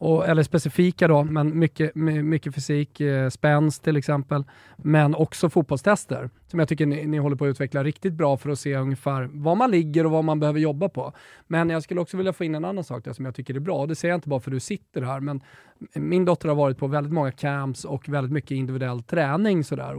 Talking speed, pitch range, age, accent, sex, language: 240 wpm, 140-170 Hz, 20-39, native, male, Swedish